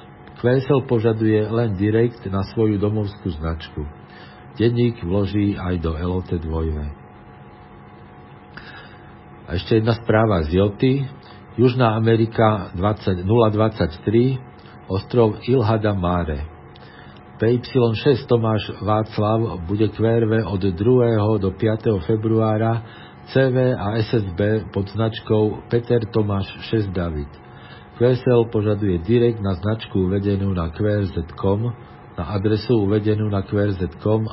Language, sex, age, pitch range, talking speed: Slovak, male, 50-69, 95-115 Hz, 105 wpm